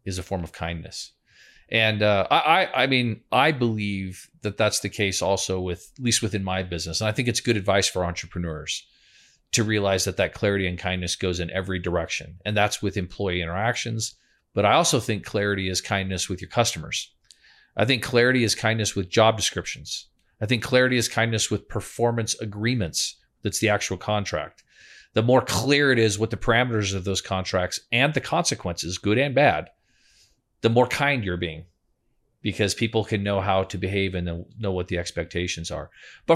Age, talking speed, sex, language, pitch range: 40-59, 190 wpm, male, English, 95-115 Hz